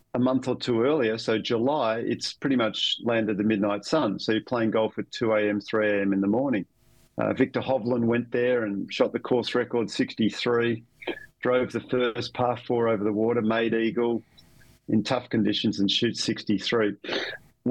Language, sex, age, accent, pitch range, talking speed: English, male, 40-59, Australian, 110-125 Hz, 180 wpm